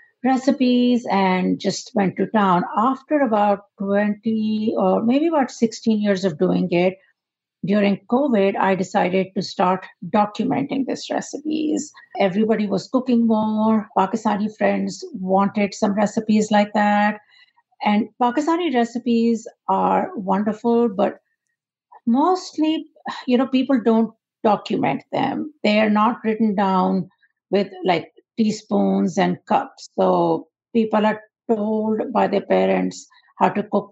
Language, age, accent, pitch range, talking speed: English, 50-69, Indian, 190-235 Hz, 125 wpm